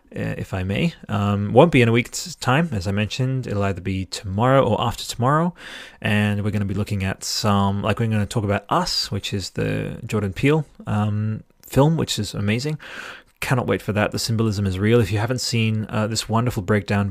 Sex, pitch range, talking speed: male, 100-125 Hz, 215 wpm